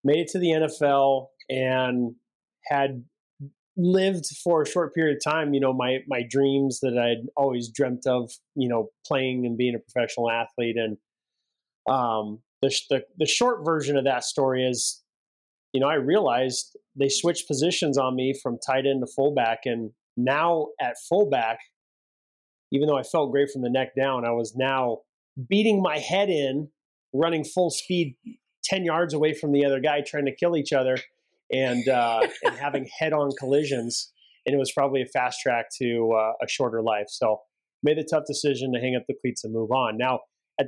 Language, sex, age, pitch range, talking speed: English, male, 30-49, 125-155 Hz, 185 wpm